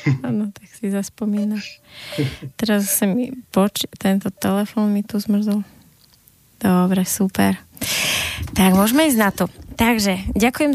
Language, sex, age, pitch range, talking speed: Slovak, female, 20-39, 190-215 Hz, 125 wpm